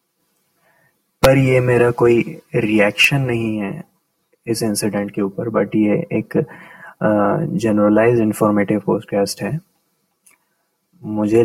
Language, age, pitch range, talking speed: Hindi, 20-39, 110-165 Hz, 100 wpm